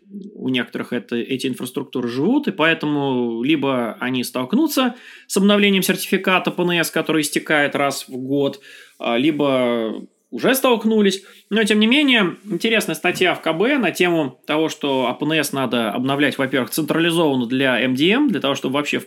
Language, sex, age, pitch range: Russian, male, 20-39, 140-200 Hz